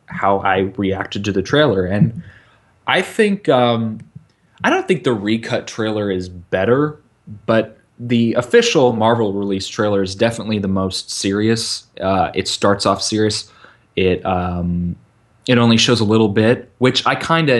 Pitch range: 95-120 Hz